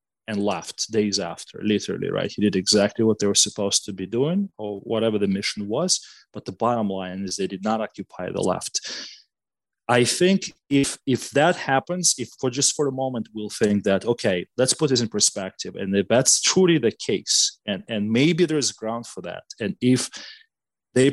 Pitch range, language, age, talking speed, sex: 100-125 Hz, English, 30-49, 195 wpm, male